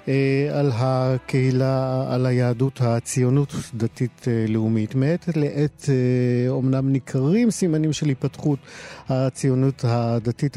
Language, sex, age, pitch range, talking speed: Hebrew, male, 50-69, 115-140 Hz, 85 wpm